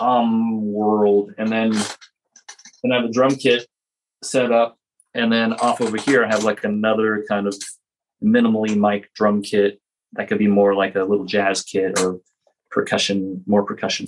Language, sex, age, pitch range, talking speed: English, male, 30-49, 100-120 Hz, 170 wpm